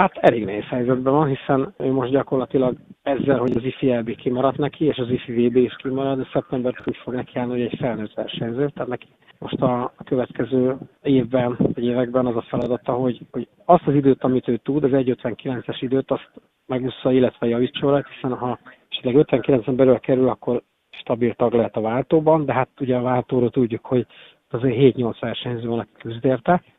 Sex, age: male, 40-59